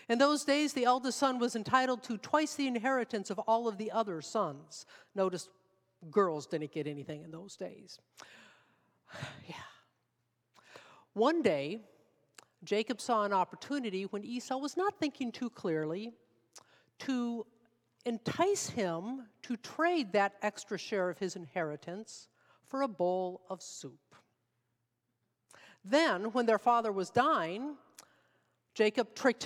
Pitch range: 170-250 Hz